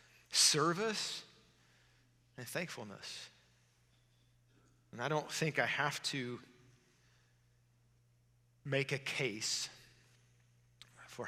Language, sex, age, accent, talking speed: English, male, 40-59, American, 75 wpm